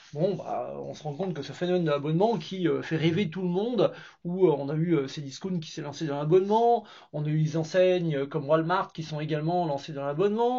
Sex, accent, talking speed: male, French, 245 wpm